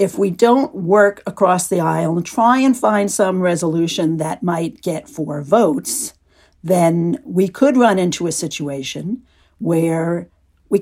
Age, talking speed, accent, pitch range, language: 50-69, 150 wpm, American, 170-240 Hz, English